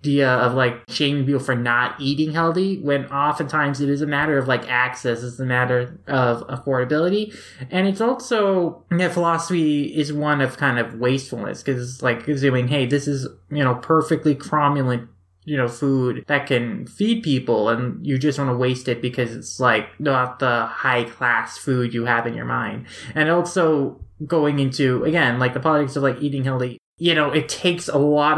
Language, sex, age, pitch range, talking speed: English, male, 20-39, 125-150 Hz, 195 wpm